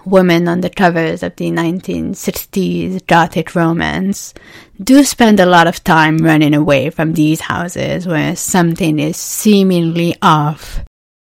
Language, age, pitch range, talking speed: English, 20-39, 165-190 Hz, 135 wpm